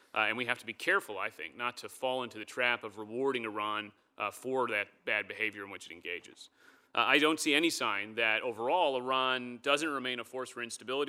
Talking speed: 225 wpm